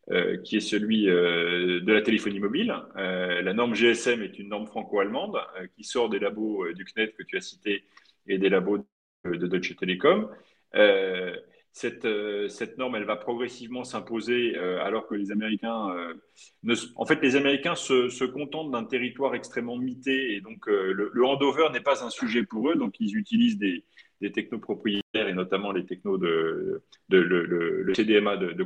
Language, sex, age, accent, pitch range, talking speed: French, male, 30-49, French, 105-175 Hz, 200 wpm